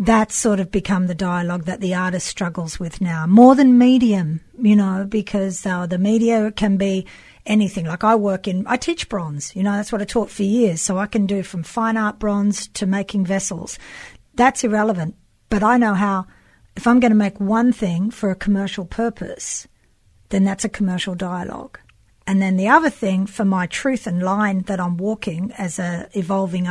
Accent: Australian